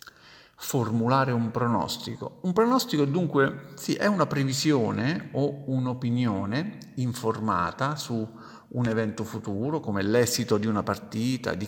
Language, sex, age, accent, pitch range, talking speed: Italian, male, 50-69, native, 110-135 Hz, 120 wpm